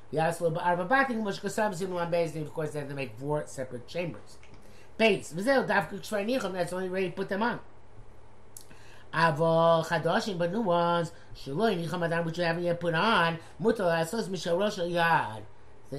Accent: American